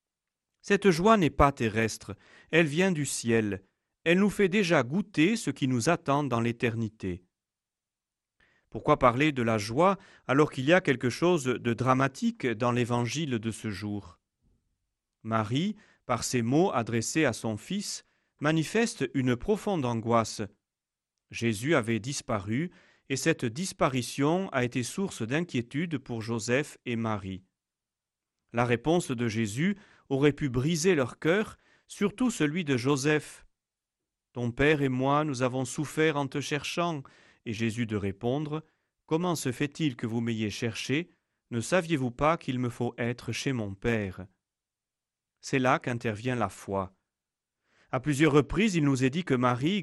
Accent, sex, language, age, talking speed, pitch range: French, male, French, 40-59, 145 wpm, 115-165 Hz